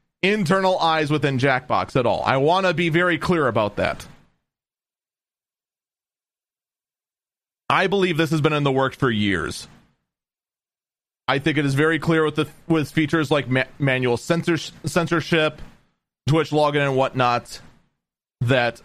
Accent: American